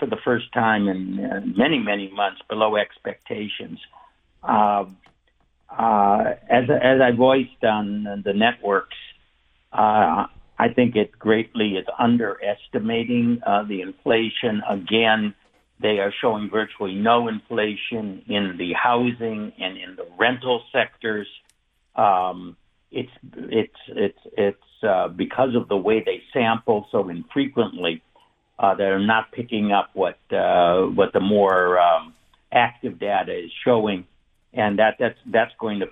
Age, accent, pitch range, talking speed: 60-79, American, 100-120 Hz, 135 wpm